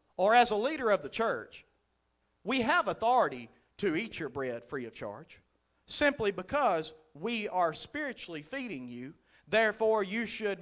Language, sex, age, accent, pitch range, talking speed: English, male, 40-59, American, 210-320 Hz, 155 wpm